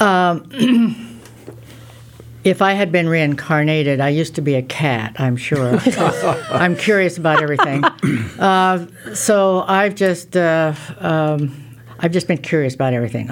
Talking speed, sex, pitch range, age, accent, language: 125 wpm, female, 145-180 Hz, 60-79, American, English